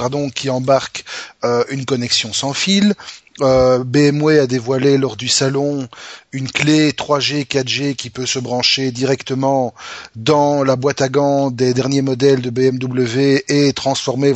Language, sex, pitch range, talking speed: French, male, 125-150 Hz, 145 wpm